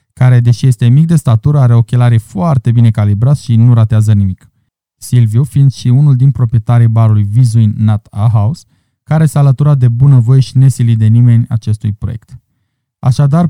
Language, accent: Romanian, native